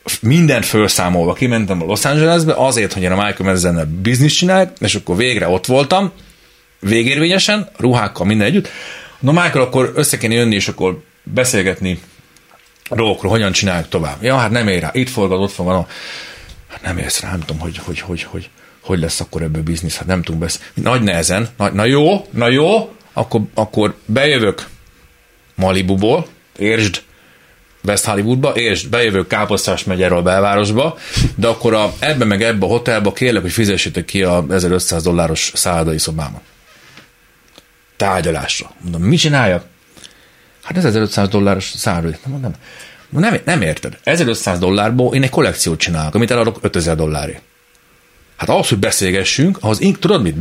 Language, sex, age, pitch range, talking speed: Hungarian, male, 40-59, 90-125 Hz, 160 wpm